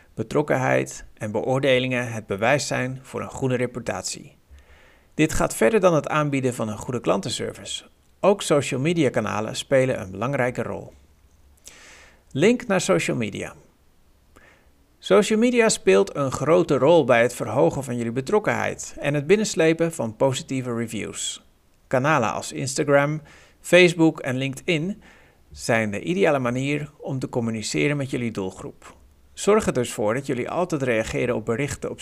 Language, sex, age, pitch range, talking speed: Dutch, male, 60-79, 105-155 Hz, 145 wpm